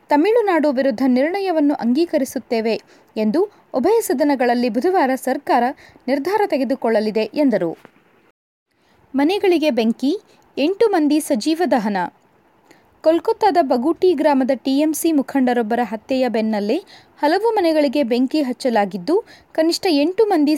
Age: 20-39